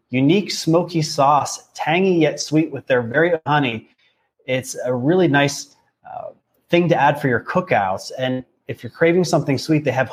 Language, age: English, 30-49